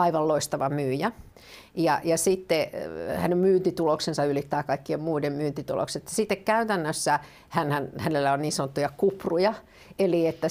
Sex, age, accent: female, 50-69, native